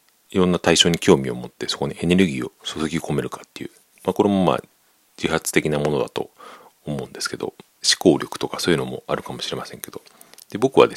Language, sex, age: Japanese, male, 40-59